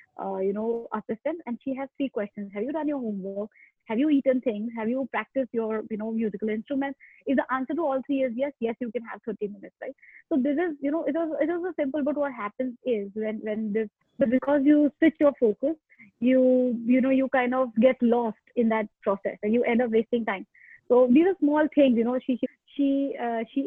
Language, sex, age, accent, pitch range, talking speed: English, female, 20-39, Indian, 230-280 Hz, 240 wpm